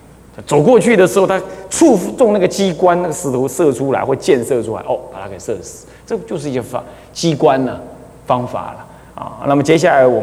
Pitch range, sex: 130-195 Hz, male